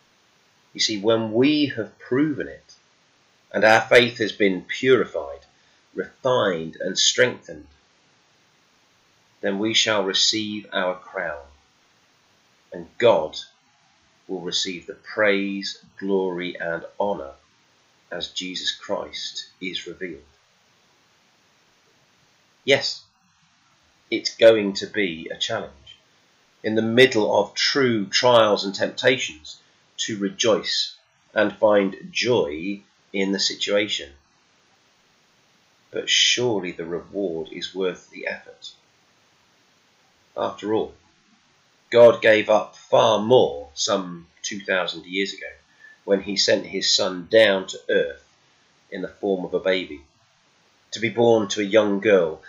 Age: 30-49